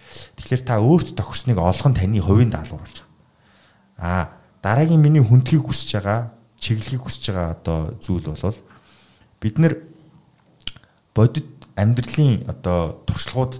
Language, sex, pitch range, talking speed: English, male, 95-120 Hz, 115 wpm